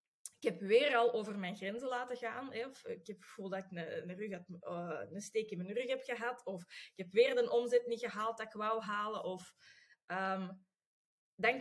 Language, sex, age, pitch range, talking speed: English, female, 20-39, 190-285 Hz, 205 wpm